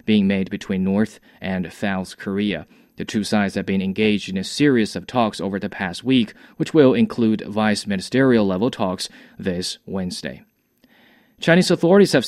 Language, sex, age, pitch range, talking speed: English, male, 20-39, 100-145 Hz, 155 wpm